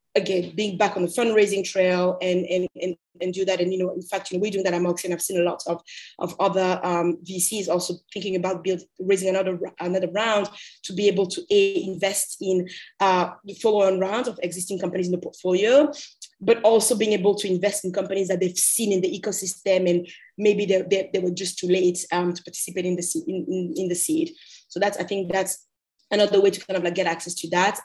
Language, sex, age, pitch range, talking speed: English, female, 20-39, 180-200 Hz, 230 wpm